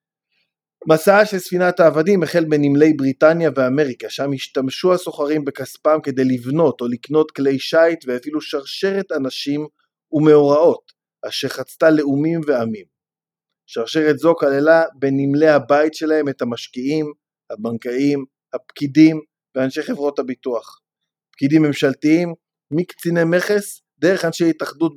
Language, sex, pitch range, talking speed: Hebrew, male, 140-165 Hz, 110 wpm